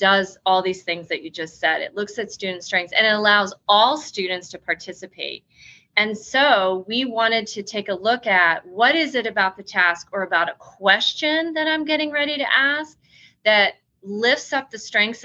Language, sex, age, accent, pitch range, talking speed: English, female, 30-49, American, 185-240 Hz, 195 wpm